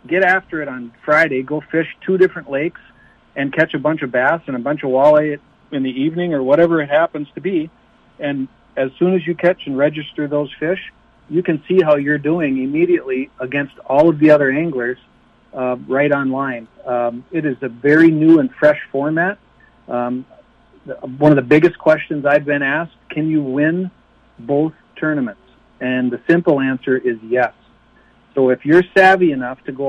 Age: 60-79